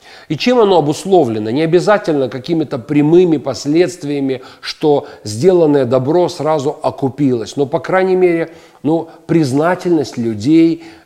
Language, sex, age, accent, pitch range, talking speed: Russian, male, 40-59, native, 145-195 Hz, 115 wpm